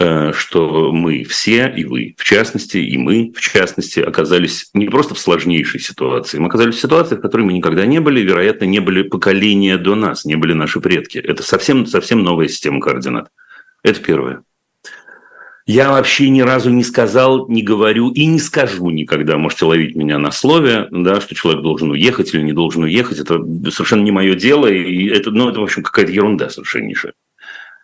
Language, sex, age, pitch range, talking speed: Russian, male, 40-59, 85-130 Hz, 180 wpm